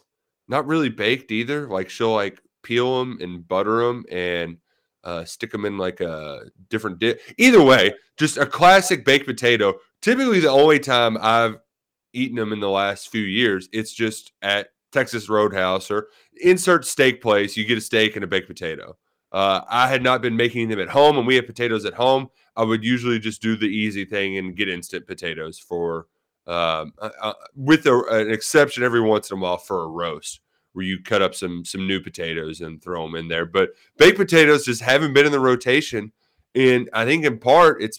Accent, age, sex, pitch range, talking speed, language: American, 30-49, male, 95-130 Hz, 200 wpm, English